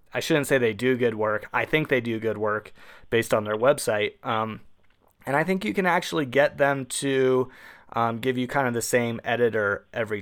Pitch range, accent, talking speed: 105-130 Hz, American, 210 wpm